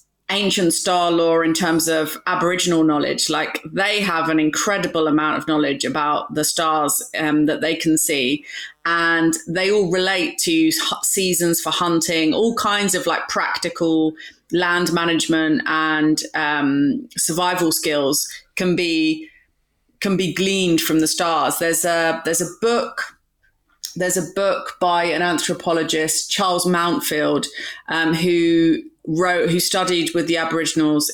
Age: 30-49